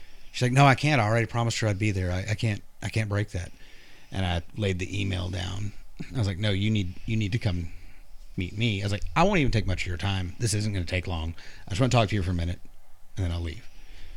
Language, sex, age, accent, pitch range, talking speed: English, male, 30-49, American, 90-130 Hz, 290 wpm